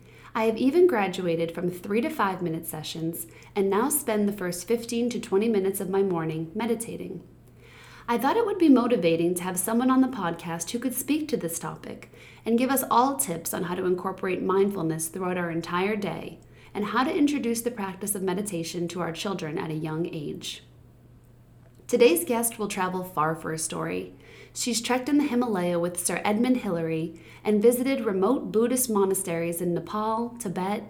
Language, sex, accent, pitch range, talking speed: English, female, American, 175-230 Hz, 185 wpm